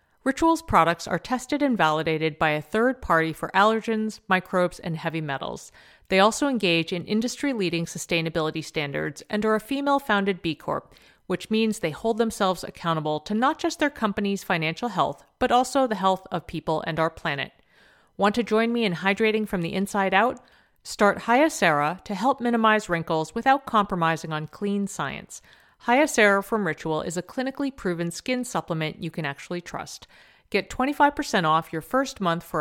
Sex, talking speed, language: female, 170 wpm, English